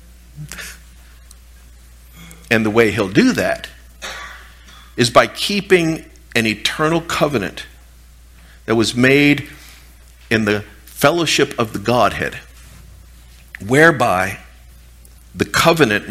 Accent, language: American, English